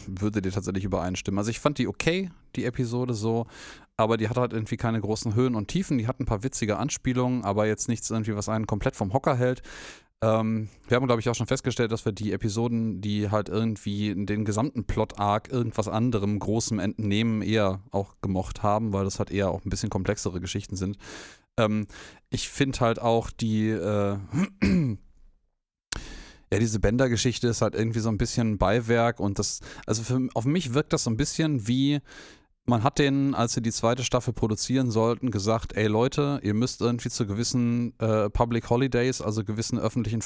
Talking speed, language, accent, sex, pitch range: 190 wpm, German, German, male, 105-120 Hz